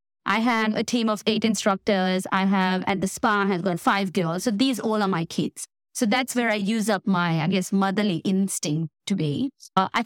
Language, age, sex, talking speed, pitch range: English, 20-39, female, 220 wpm, 185-225 Hz